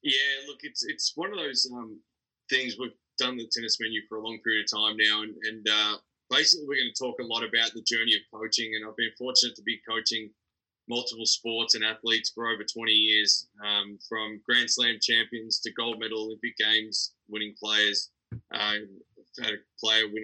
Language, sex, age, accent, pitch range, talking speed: English, male, 20-39, Australian, 110-120 Hz, 205 wpm